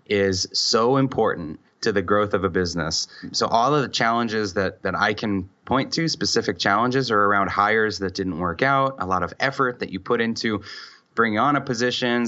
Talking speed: 200 wpm